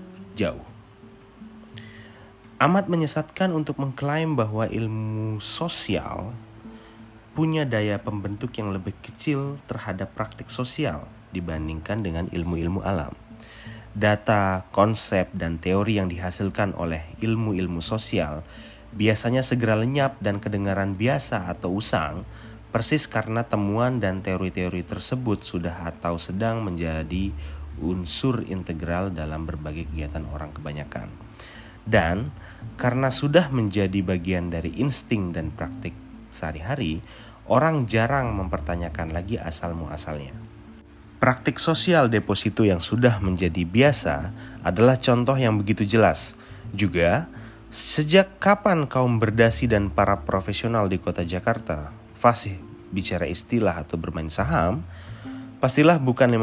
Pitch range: 90-120 Hz